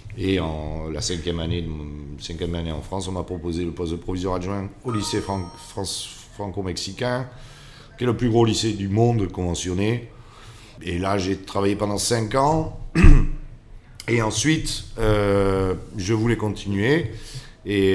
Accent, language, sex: French, French, male